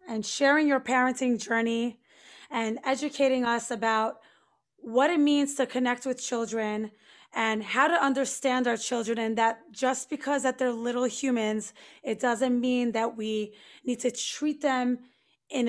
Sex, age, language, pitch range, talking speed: female, 20-39, English, 225-265 Hz, 155 wpm